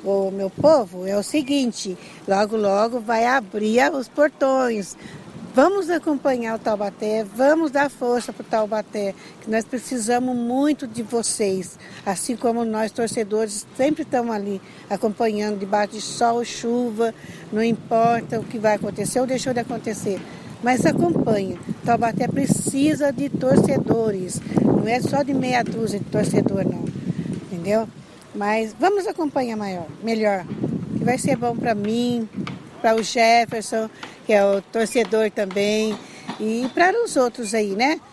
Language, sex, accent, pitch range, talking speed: Portuguese, female, Brazilian, 210-245 Hz, 145 wpm